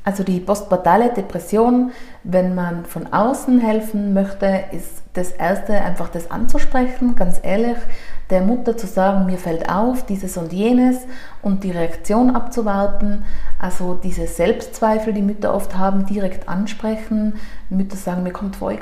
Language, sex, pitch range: German, female, 185-225 Hz